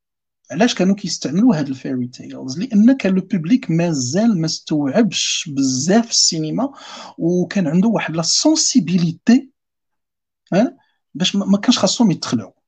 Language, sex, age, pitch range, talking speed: Arabic, male, 50-69, 170-240 Hz, 115 wpm